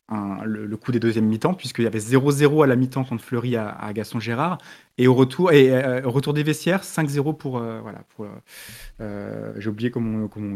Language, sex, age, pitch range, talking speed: French, male, 20-39, 115-140 Hz, 220 wpm